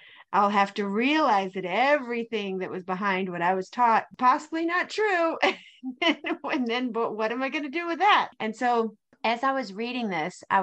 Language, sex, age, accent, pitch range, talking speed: English, female, 40-59, American, 185-225 Hz, 205 wpm